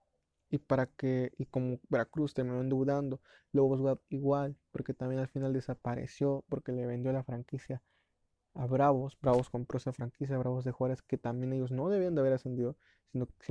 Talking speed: 175 wpm